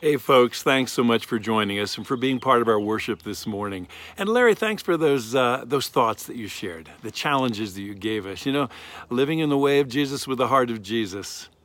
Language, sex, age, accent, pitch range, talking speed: English, male, 50-69, American, 105-135 Hz, 240 wpm